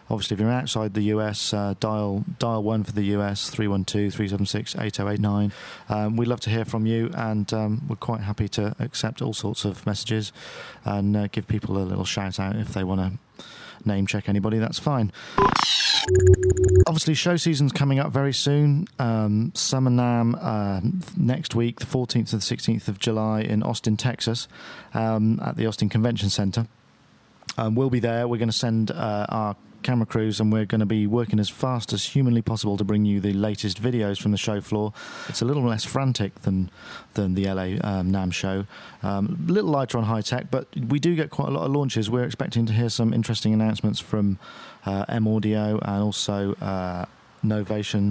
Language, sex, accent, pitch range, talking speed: English, male, British, 100-120 Hz, 185 wpm